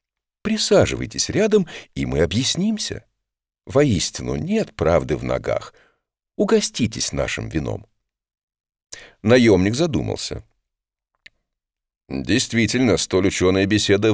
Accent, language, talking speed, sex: native, Russian, 80 wpm, male